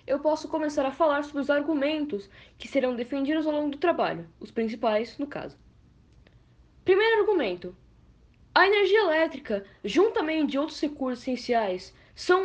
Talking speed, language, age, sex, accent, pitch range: 145 wpm, Portuguese, 10-29, female, Brazilian, 235-360 Hz